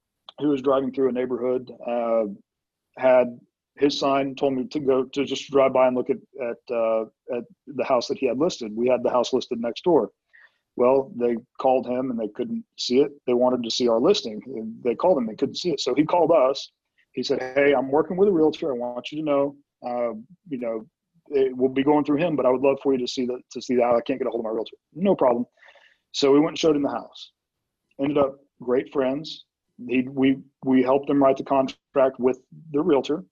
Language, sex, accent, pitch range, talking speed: English, male, American, 125-150 Hz, 235 wpm